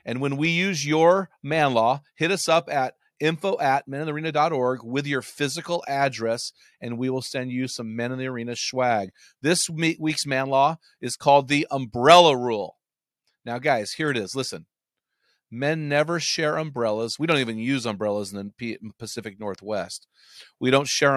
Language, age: English, 40-59